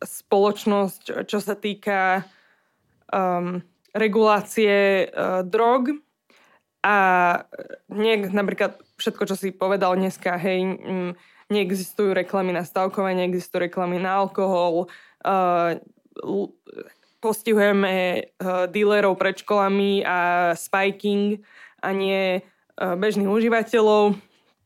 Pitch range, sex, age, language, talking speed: 185-210 Hz, female, 20-39, Slovak, 90 wpm